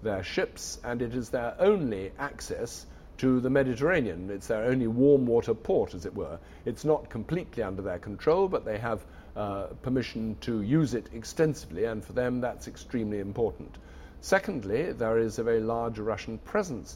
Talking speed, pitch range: 175 wpm, 95-125 Hz